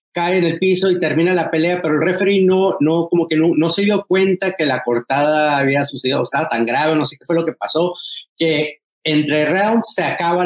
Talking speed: 235 wpm